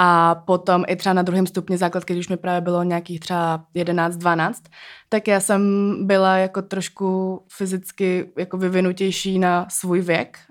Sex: female